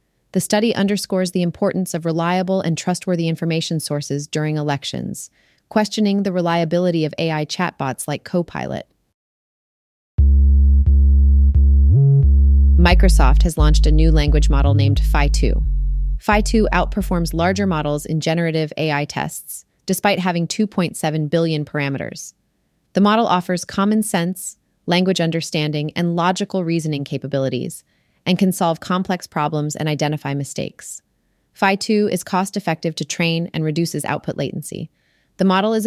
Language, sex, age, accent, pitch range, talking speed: English, female, 30-49, American, 140-180 Hz, 125 wpm